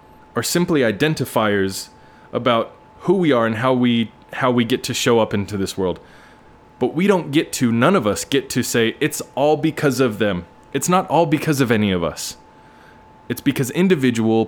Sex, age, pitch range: male, 20-39, 110-140 Hz